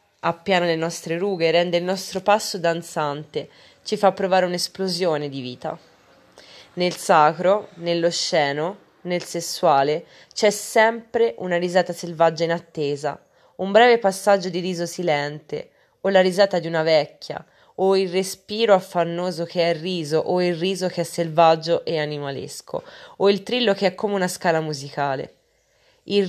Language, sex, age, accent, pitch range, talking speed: Italian, female, 20-39, native, 160-195 Hz, 150 wpm